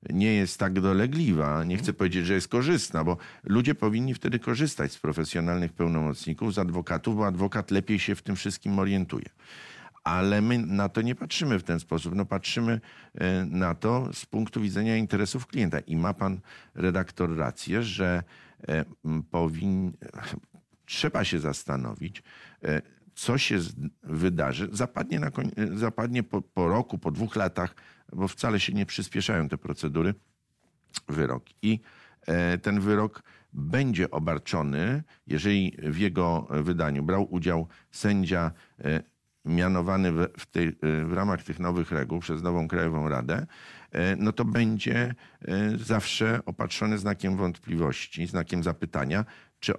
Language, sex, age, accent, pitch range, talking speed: Polish, male, 50-69, native, 80-105 Hz, 130 wpm